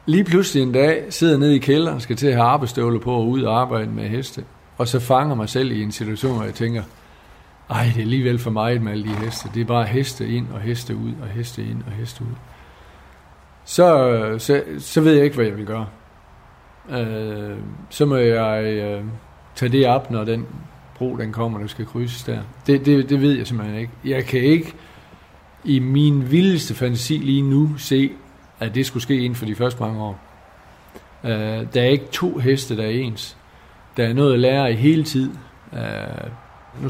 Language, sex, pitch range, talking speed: Danish, male, 110-135 Hz, 205 wpm